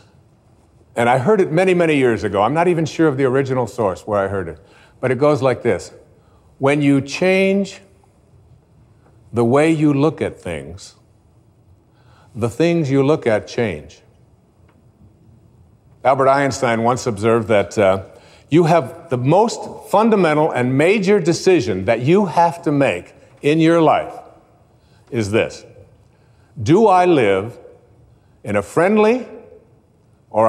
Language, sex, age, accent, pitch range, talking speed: English, male, 50-69, American, 120-170 Hz, 140 wpm